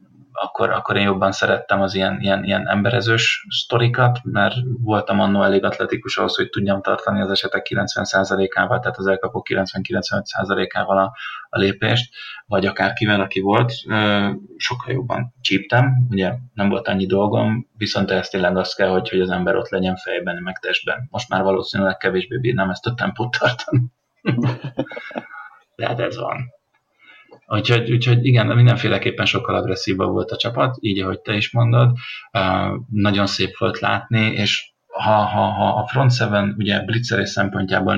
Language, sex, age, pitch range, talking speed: Hungarian, male, 30-49, 95-120 Hz, 155 wpm